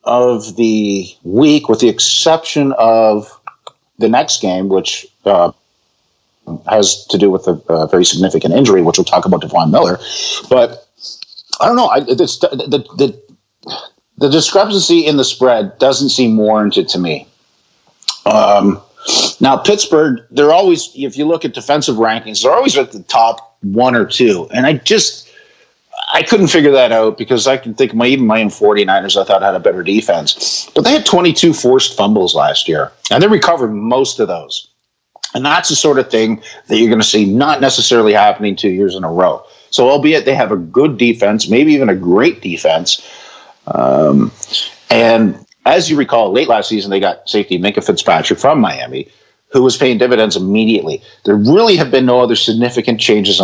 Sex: male